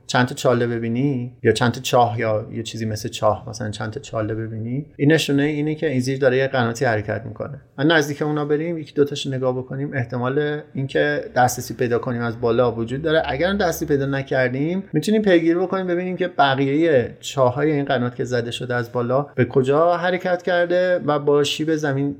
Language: Persian